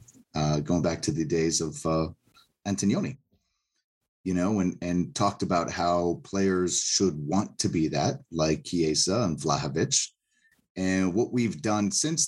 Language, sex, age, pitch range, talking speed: English, male, 30-49, 90-110 Hz, 150 wpm